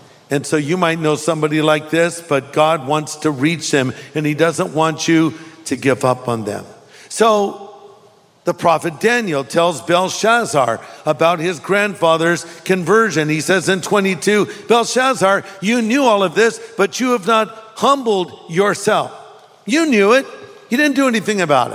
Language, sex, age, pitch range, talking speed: English, male, 50-69, 150-200 Hz, 160 wpm